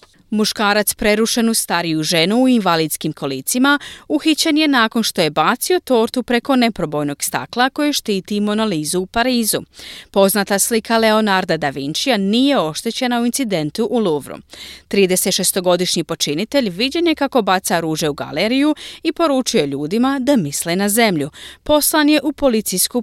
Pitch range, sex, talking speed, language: 150-250 Hz, female, 140 wpm, Croatian